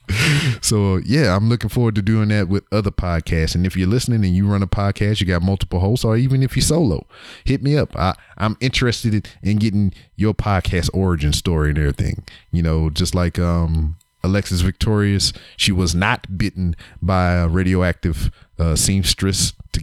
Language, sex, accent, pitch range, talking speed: English, male, American, 90-110 Hz, 180 wpm